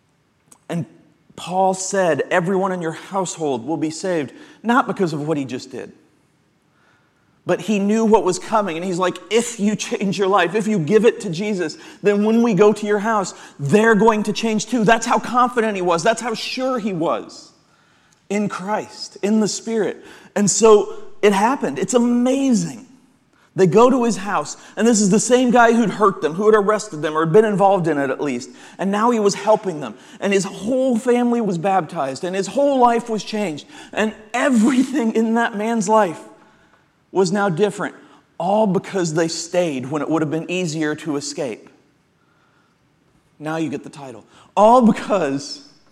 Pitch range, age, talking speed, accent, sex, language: 170-225 Hz, 40-59, 185 wpm, American, male, English